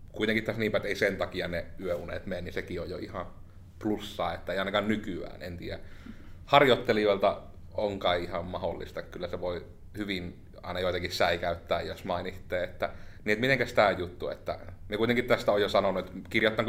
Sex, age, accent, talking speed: male, 30-49, native, 165 wpm